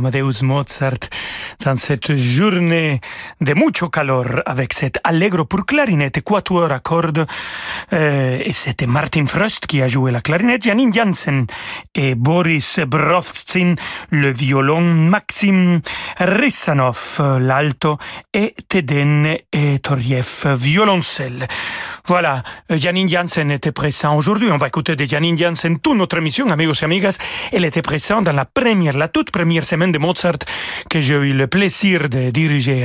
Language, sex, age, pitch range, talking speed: French, male, 40-59, 140-180 Hz, 140 wpm